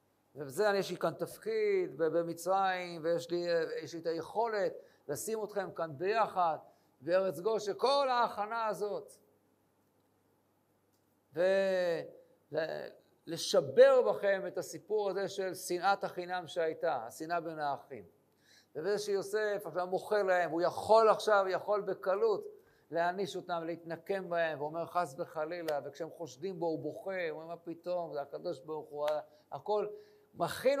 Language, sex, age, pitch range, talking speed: Hebrew, male, 50-69, 165-210 Hz, 125 wpm